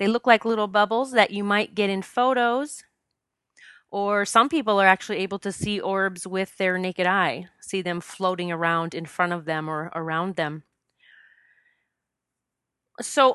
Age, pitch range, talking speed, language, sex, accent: 30-49, 185-235 Hz, 160 wpm, English, female, American